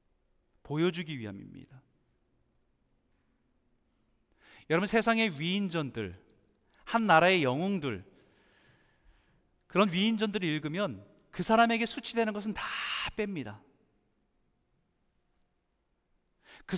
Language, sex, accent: Korean, male, native